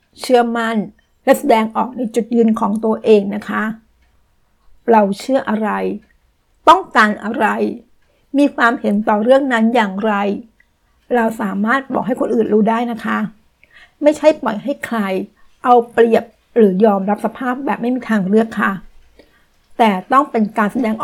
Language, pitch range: Thai, 210-240 Hz